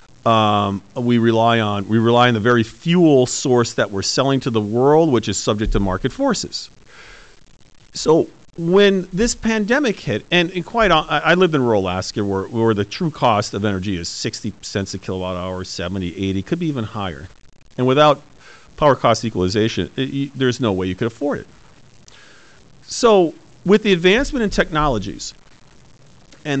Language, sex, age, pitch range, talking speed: English, male, 40-59, 110-150 Hz, 170 wpm